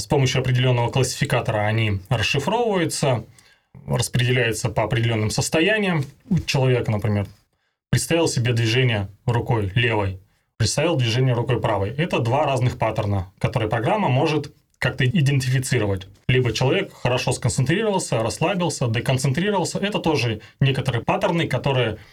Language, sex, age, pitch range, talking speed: Russian, male, 20-39, 110-135 Hz, 115 wpm